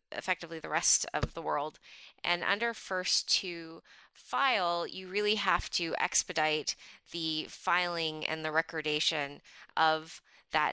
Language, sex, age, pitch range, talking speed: English, female, 20-39, 160-185 Hz, 130 wpm